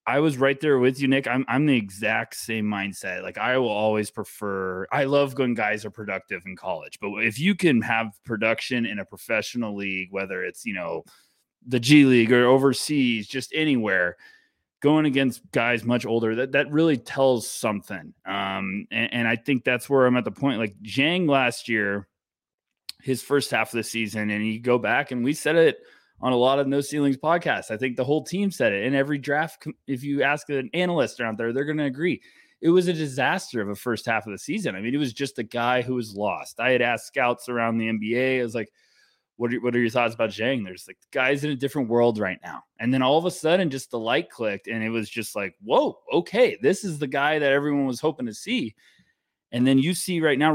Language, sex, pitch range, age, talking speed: English, male, 110-145 Hz, 20-39, 230 wpm